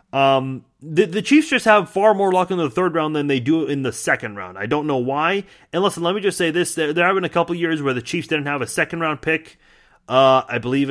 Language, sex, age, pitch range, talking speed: English, male, 30-49, 130-175 Hz, 275 wpm